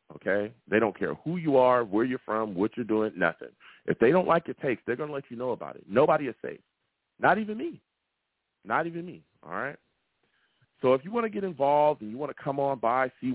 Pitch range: 105-140 Hz